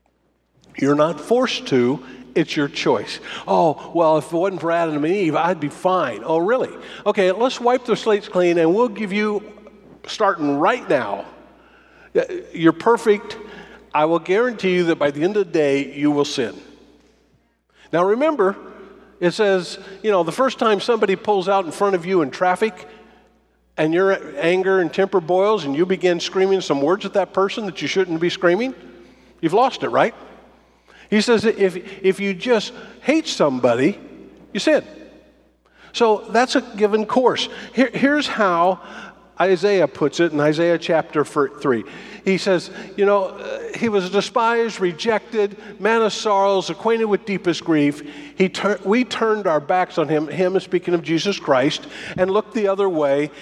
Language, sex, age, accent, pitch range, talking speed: English, male, 50-69, American, 170-215 Hz, 170 wpm